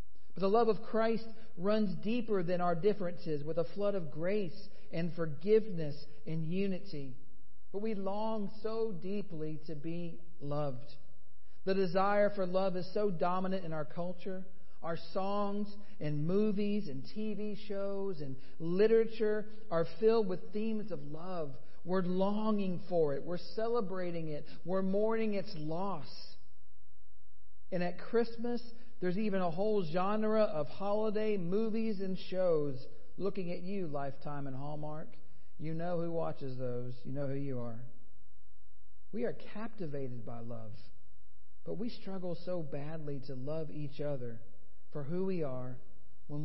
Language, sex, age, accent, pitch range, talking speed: English, male, 50-69, American, 140-195 Hz, 140 wpm